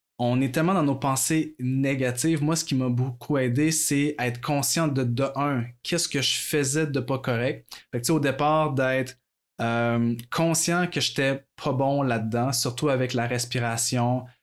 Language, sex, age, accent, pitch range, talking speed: French, male, 20-39, Canadian, 120-140 Hz, 185 wpm